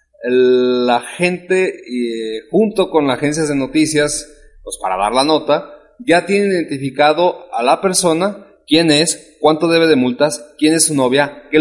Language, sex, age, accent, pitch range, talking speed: Spanish, male, 30-49, Mexican, 130-175 Hz, 155 wpm